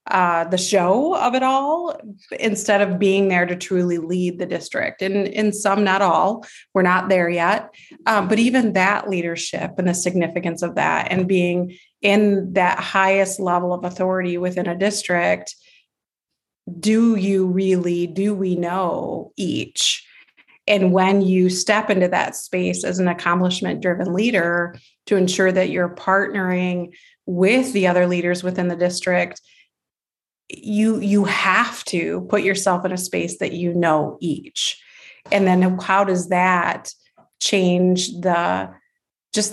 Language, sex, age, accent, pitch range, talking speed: English, female, 30-49, American, 180-205 Hz, 145 wpm